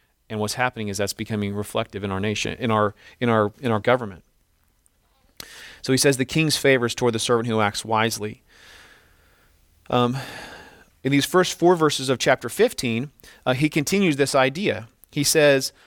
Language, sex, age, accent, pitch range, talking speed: English, male, 40-59, American, 110-135 Hz, 170 wpm